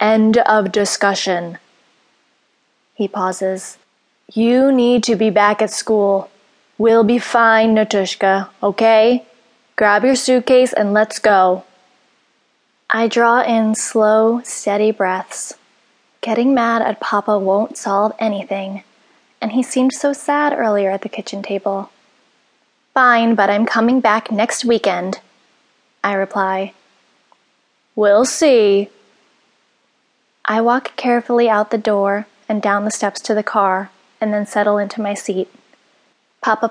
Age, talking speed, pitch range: 20-39, 125 wpm, 200-230 Hz